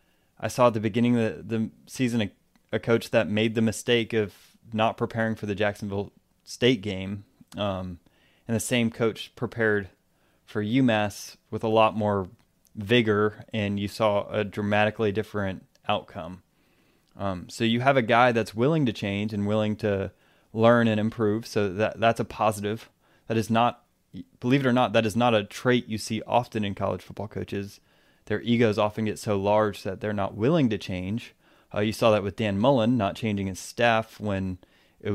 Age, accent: 20-39, American